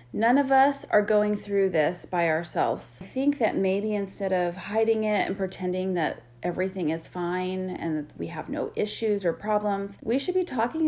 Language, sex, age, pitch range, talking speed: English, female, 40-59, 185-225 Hz, 190 wpm